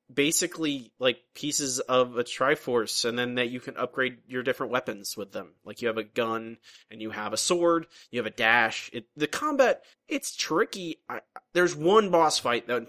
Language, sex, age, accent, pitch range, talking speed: English, male, 20-39, American, 110-145 Hz, 195 wpm